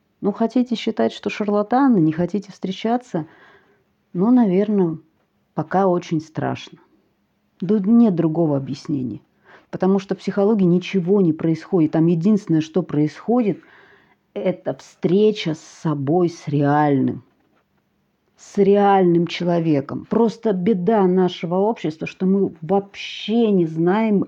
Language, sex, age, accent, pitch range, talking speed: Russian, female, 40-59, native, 170-215 Hz, 115 wpm